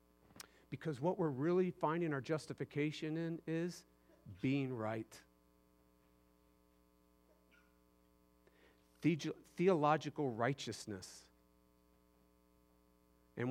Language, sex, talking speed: English, male, 60 wpm